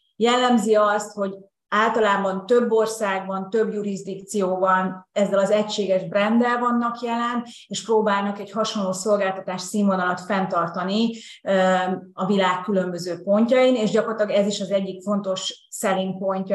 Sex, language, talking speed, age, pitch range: female, Hungarian, 125 wpm, 30-49, 190-215 Hz